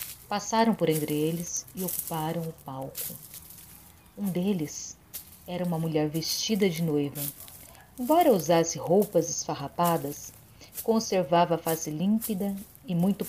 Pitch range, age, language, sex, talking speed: 155-185 Hz, 40-59, Portuguese, female, 115 wpm